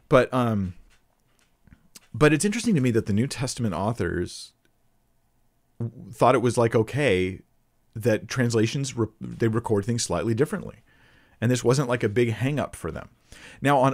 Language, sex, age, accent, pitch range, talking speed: English, male, 40-59, American, 95-120 Hz, 165 wpm